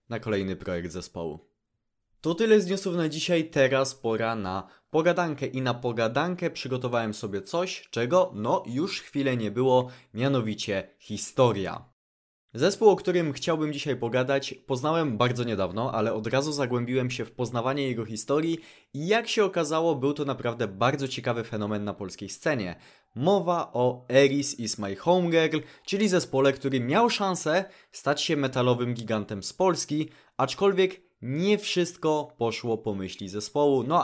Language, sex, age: Polish, male, 20-39